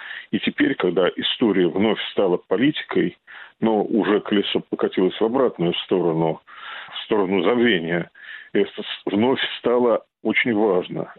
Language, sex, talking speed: Russian, male, 120 wpm